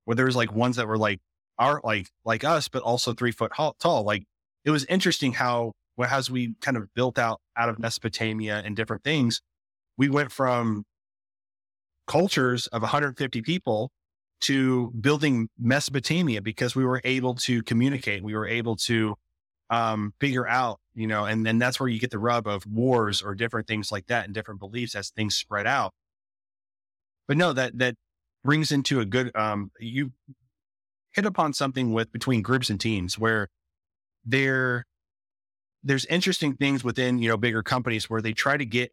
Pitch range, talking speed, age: 110-130 Hz, 175 wpm, 30-49